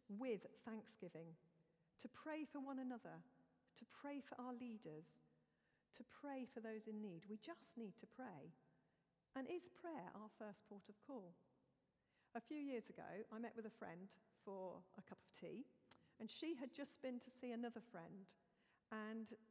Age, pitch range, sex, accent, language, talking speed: 50-69, 205-265 Hz, female, British, English, 170 wpm